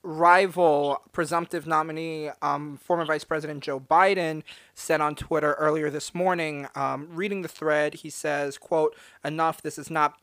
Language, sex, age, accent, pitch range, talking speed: English, male, 30-49, American, 145-170 Hz, 155 wpm